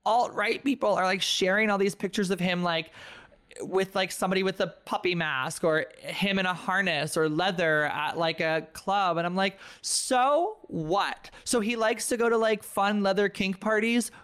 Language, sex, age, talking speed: English, male, 20-39, 190 wpm